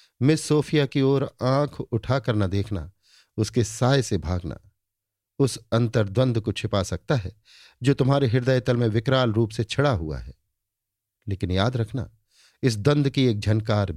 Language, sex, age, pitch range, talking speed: Hindi, male, 50-69, 100-125 Hz, 160 wpm